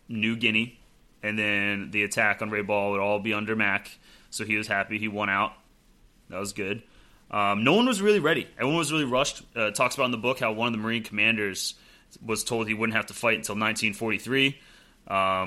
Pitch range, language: 105-115 Hz, English